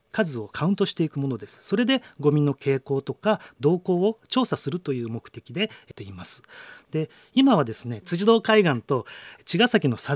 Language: Japanese